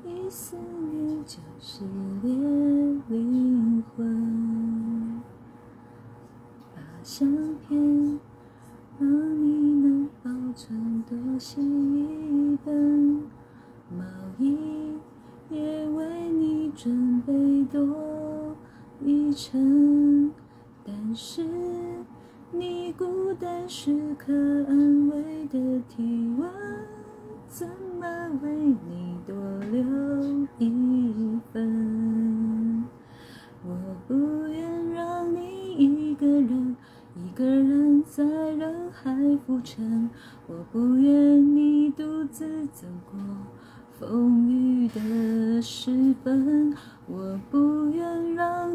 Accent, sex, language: native, female, Chinese